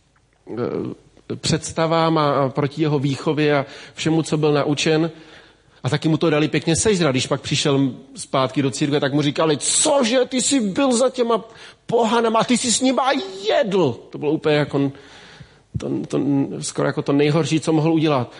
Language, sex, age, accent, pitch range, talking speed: Czech, male, 40-59, native, 140-165 Hz, 175 wpm